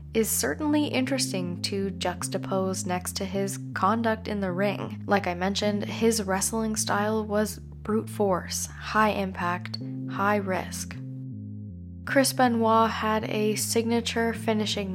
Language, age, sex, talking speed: English, 10-29, female, 125 wpm